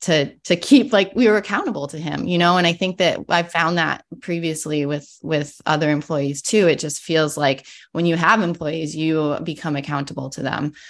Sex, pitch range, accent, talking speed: female, 145-170 Hz, American, 210 wpm